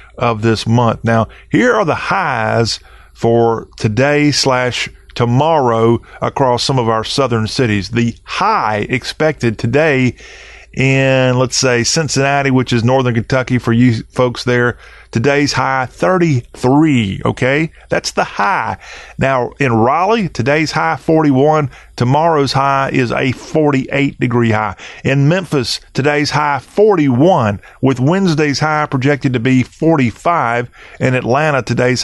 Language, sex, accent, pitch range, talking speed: English, male, American, 120-145 Hz, 125 wpm